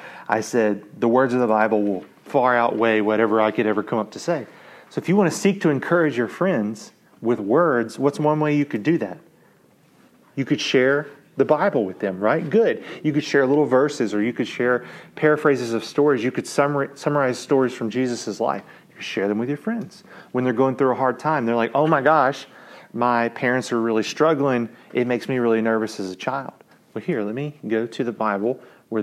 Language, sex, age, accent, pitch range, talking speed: English, male, 30-49, American, 115-150 Hz, 220 wpm